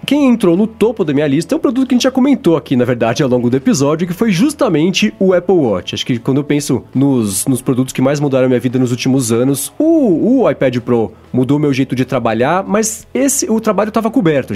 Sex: male